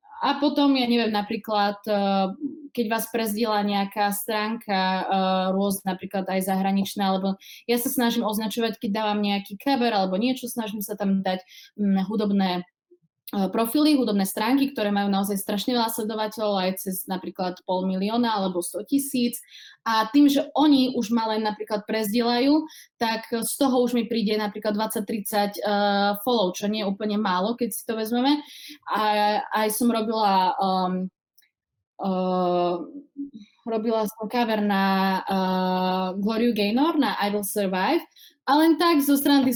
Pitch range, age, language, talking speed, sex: 200-240 Hz, 20-39, Czech, 145 wpm, female